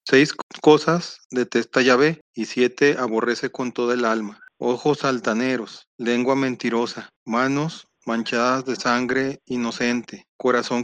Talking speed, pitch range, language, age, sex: 115 wpm, 120-140 Hz, Spanish, 40-59, male